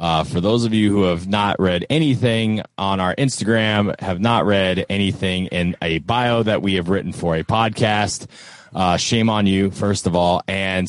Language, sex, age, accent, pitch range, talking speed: English, male, 30-49, American, 90-105 Hz, 195 wpm